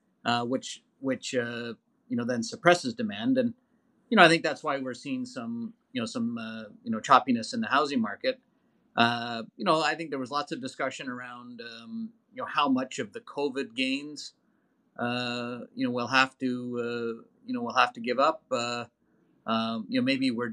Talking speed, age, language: 205 wpm, 30-49, English